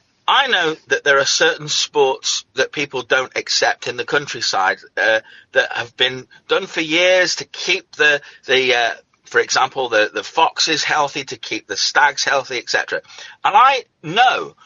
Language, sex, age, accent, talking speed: English, male, 40-59, British, 170 wpm